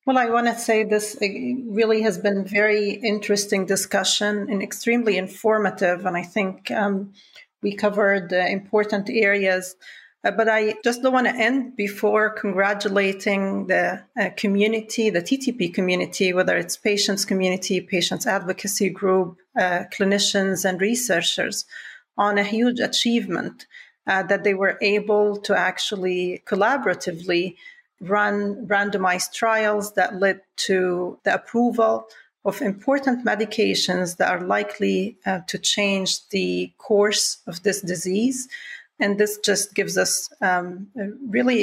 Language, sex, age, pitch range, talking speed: English, female, 40-59, 190-220 Hz, 135 wpm